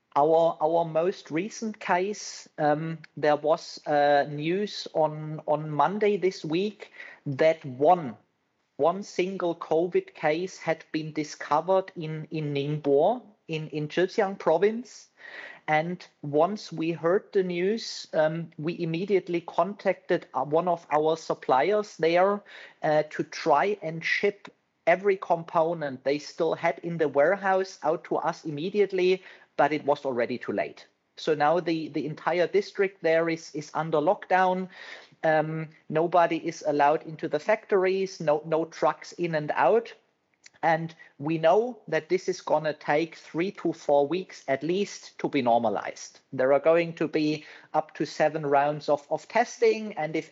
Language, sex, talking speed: English, male, 150 wpm